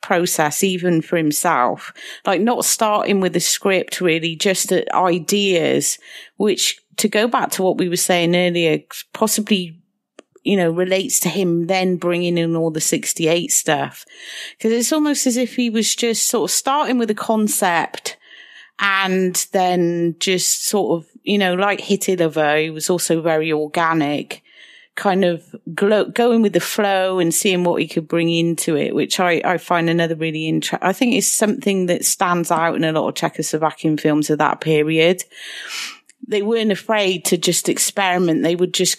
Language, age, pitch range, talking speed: English, 40-59, 165-205 Hz, 170 wpm